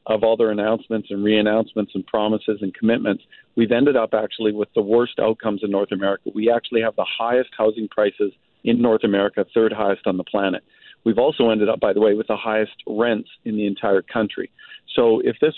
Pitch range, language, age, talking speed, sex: 110-130 Hz, English, 50-69, 210 wpm, male